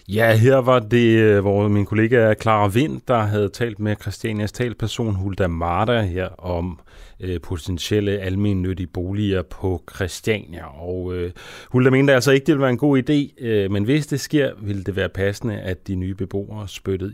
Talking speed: 180 wpm